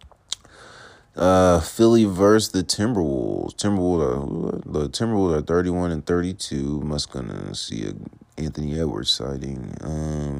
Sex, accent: male, American